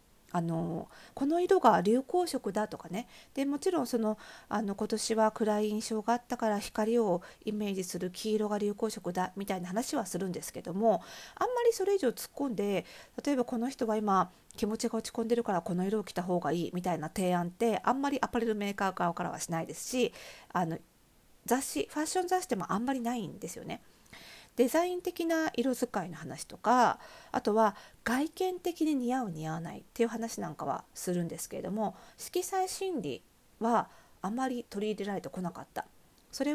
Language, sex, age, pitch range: Japanese, female, 40-59, 180-245 Hz